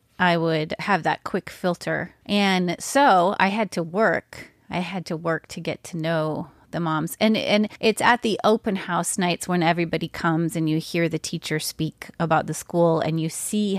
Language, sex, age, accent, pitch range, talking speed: English, female, 30-49, American, 160-190 Hz, 195 wpm